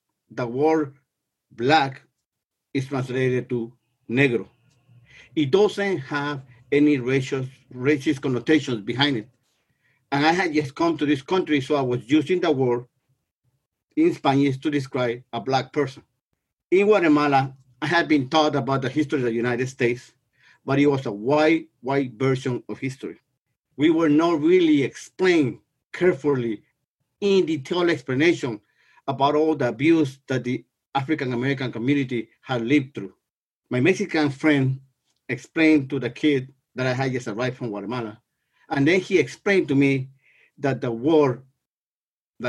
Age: 50-69